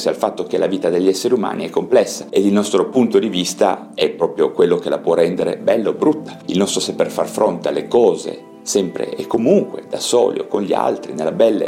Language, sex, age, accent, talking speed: Italian, male, 40-59, native, 225 wpm